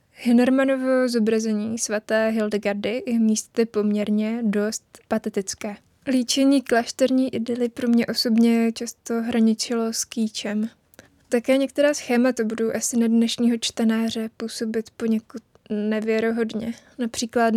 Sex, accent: female, native